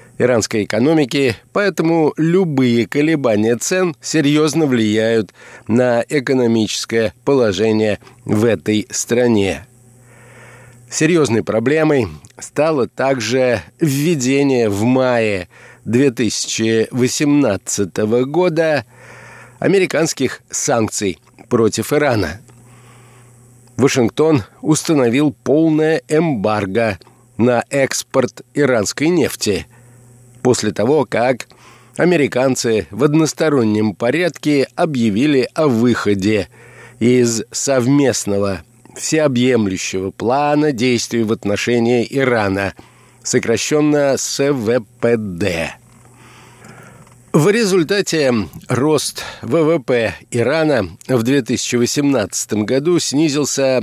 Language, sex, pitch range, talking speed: Russian, male, 115-145 Hz, 70 wpm